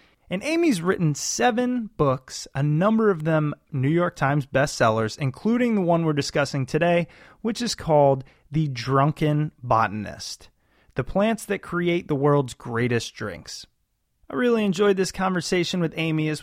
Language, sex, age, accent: English, male, 30-49, American